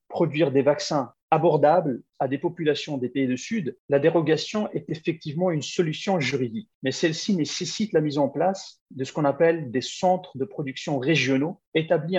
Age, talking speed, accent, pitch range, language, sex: 40-59, 170 wpm, French, 140-175 Hz, French, male